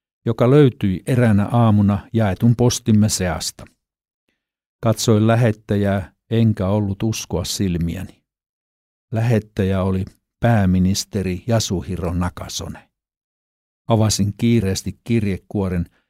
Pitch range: 95-115 Hz